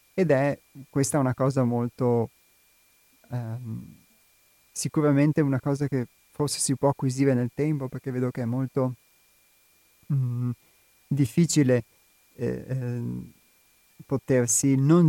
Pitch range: 120-145 Hz